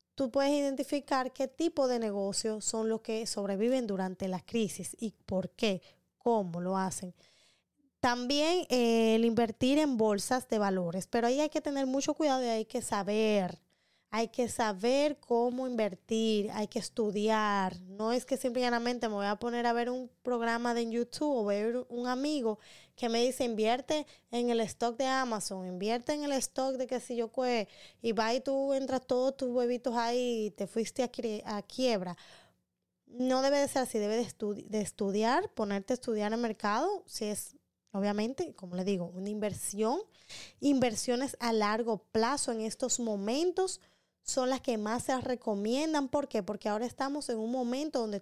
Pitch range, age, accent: 210-260 Hz, 20-39, American